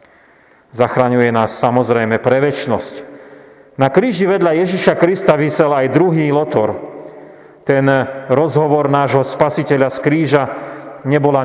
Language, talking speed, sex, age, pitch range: Slovak, 105 wpm, male, 40-59, 130-160 Hz